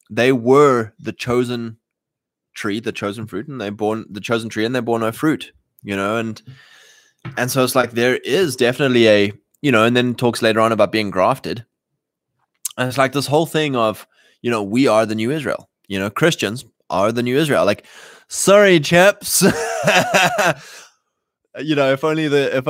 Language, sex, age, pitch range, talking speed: English, male, 20-39, 110-135 Hz, 185 wpm